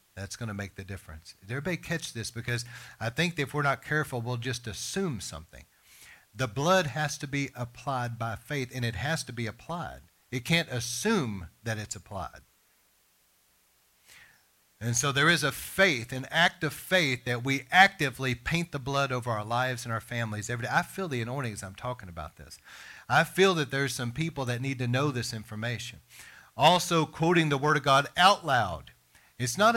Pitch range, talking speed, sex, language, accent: 120-165 Hz, 195 wpm, male, English, American